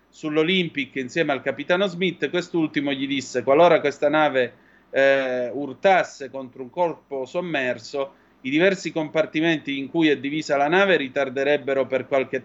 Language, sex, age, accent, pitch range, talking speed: Italian, male, 30-49, native, 130-155 Hz, 140 wpm